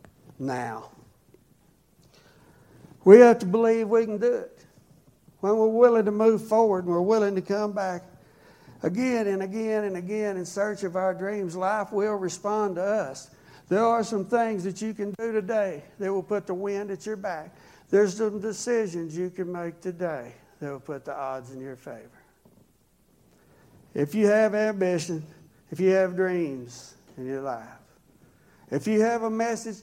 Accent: American